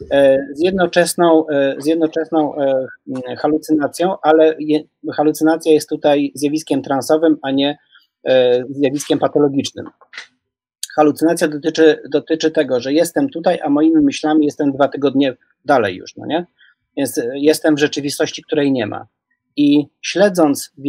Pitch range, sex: 145-160 Hz, male